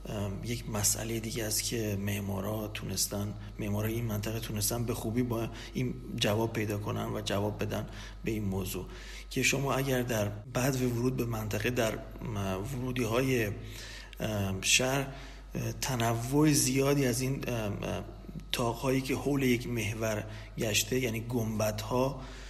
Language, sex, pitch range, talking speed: Persian, male, 105-130 Hz, 130 wpm